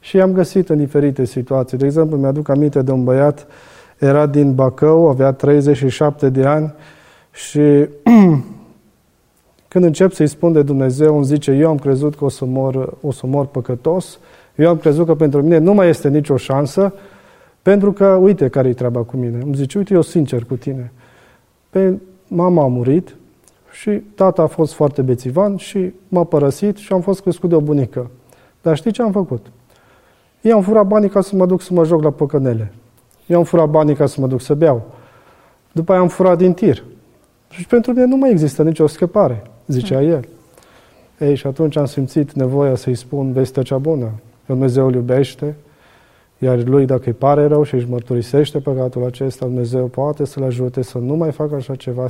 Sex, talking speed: male, 190 wpm